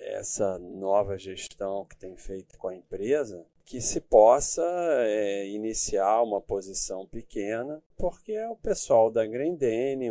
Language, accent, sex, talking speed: Portuguese, Brazilian, male, 135 wpm